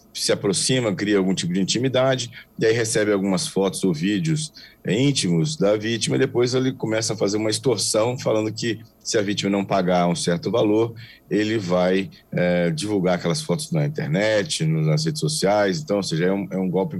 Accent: Brazilian